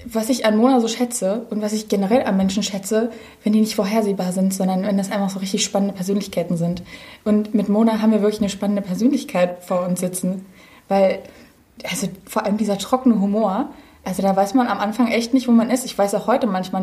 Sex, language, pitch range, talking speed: female, German, 195-245 Hz, 220 wpm